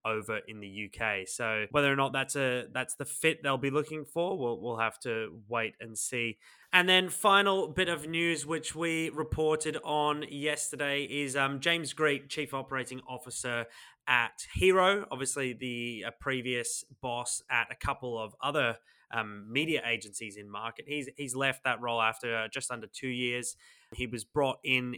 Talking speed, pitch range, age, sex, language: 180 wpm, 110-140 Hz, 20-39, male, English